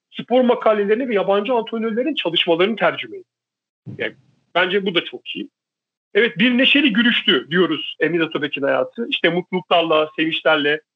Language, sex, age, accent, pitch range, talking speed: Turkish, male, 40-59, native, 155-205 Hz, 125 wpm